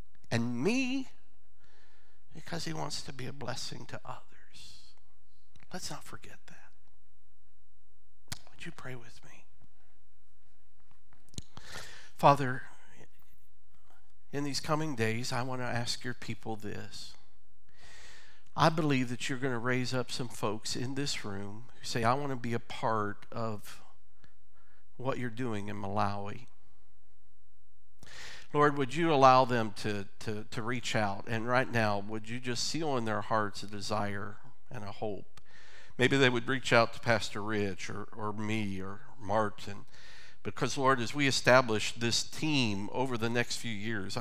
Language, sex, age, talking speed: English, male, 50-69, 145 wpm